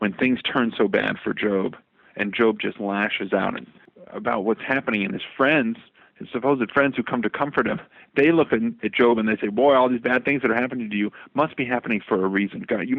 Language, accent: English, American